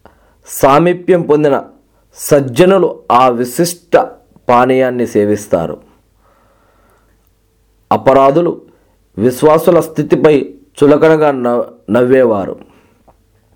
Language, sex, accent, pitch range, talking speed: Telugu, male, native, 110-160 Hz, 60 wpm